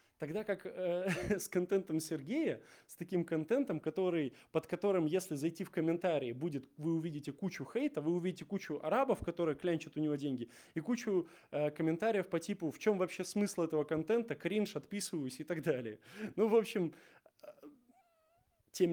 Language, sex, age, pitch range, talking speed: Russian, male, 20-39, 160-215 Hz, 160 wpm